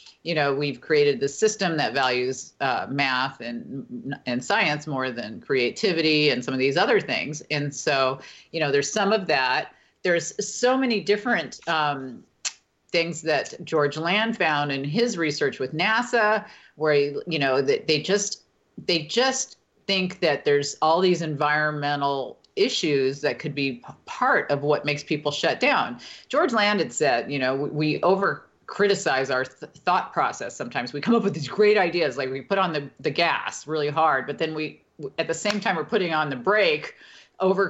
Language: English